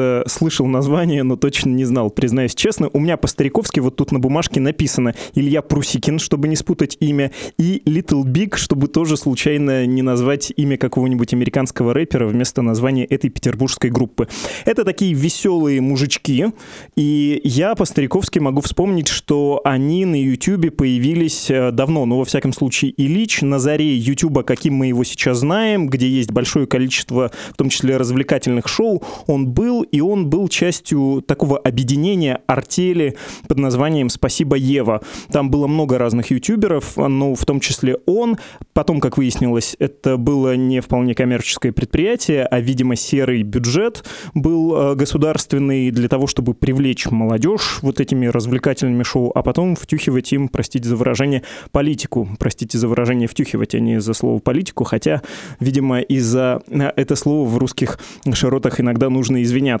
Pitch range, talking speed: 125-150 Hz, 155 wpm